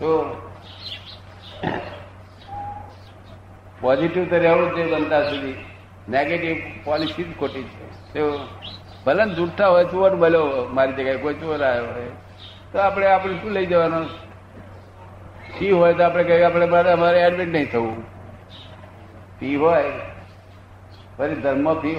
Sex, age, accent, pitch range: male, 60-79, native, 95-155 Hz